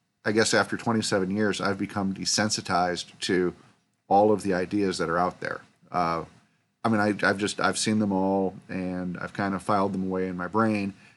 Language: English